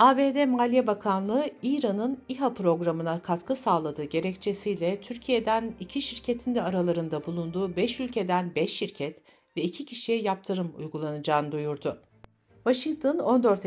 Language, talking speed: Turkish, 120 wpm